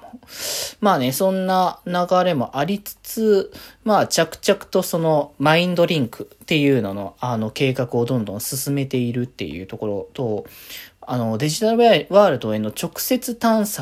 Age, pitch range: 20-39, 115-190 Hz